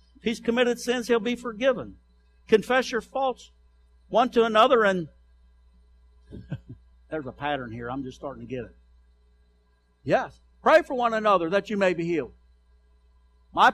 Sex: male